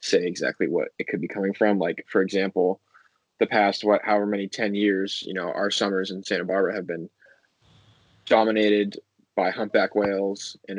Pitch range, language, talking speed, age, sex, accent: 100-120 Hz, English, 180 wpm, 20-39, male, American